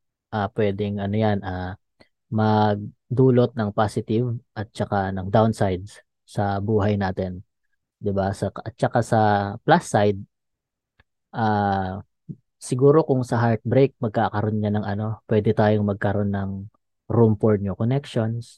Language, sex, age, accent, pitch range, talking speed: Filipino, female, 20-39, native, 100-120 Hz, 125 wpm